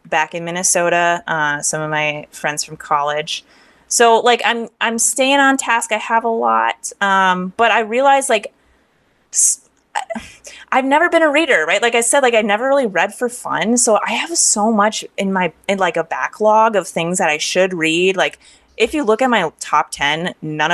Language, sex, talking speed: English, female, 195 wpm